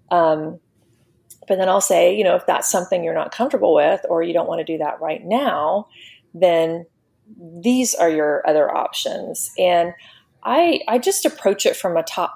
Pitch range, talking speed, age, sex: 160-190 Hz, 185 wpm, 30-49, female